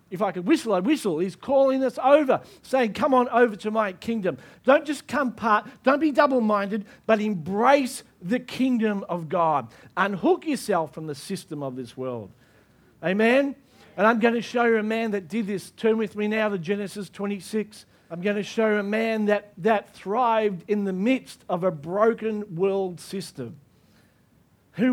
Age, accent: 50-69, Australian